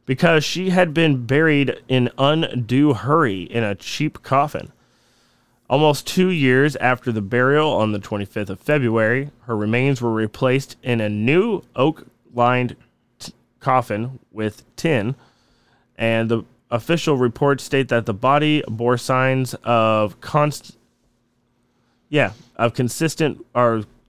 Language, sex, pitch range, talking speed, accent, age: English, male, 110-130 Hz, 120 wpm, American, 20-39